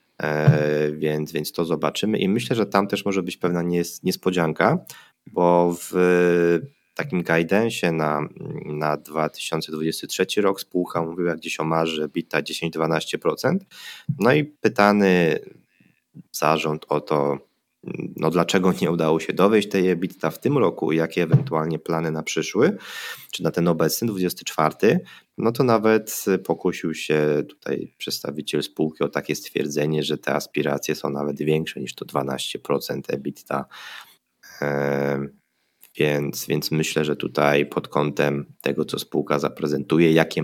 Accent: native